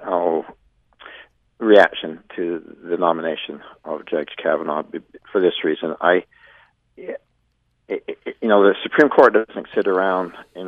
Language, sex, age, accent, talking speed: English, male, 50-69, American, 120 wpm